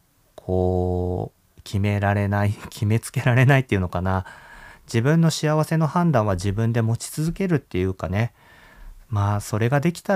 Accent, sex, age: native, male, 40-59